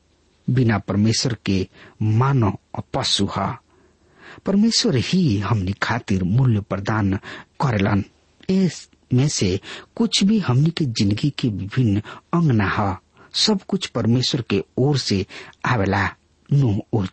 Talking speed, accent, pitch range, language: 125 wpm, Indian, 100-145 Hz, English